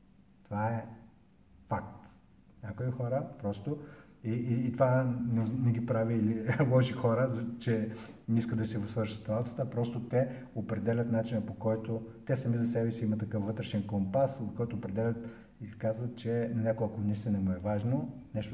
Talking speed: 170 wpm